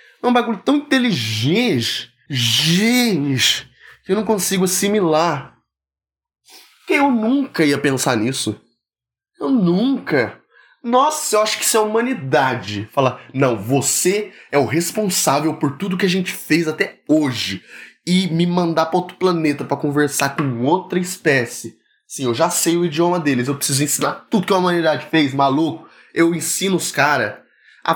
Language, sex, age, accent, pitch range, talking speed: Portuguese, male, 20-39, Brazilian, 140-185 Hz, 155 wpm